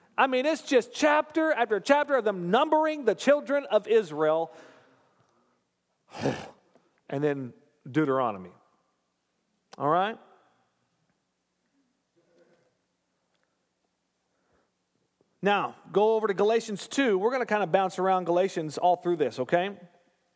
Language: English